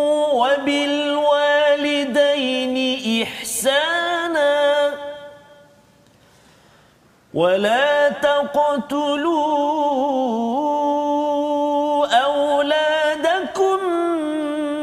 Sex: male